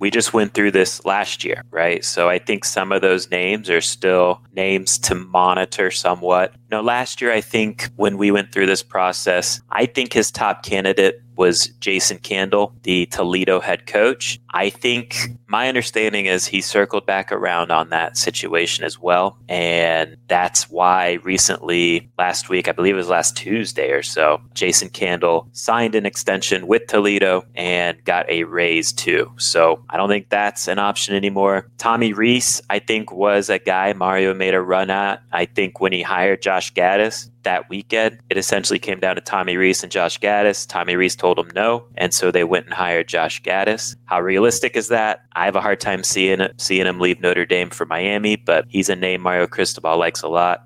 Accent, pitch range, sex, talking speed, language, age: American, 95-115 Hz, male, 190 wpm, English, 30-49